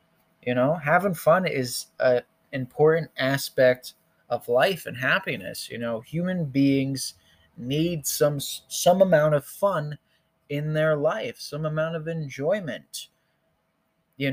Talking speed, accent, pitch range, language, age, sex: 125 wpm, American, 130-155 Hz, English, 20-39, male